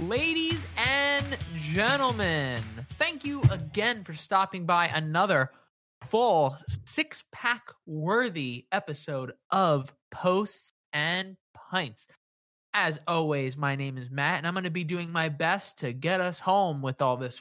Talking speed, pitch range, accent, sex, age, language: 135 wpm, 140-200 Hz, American, male, 20-39, English